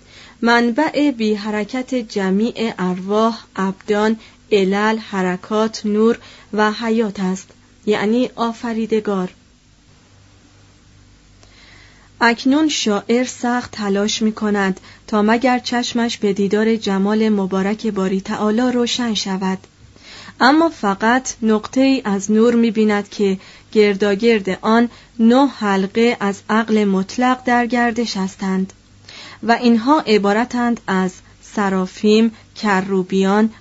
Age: 30-49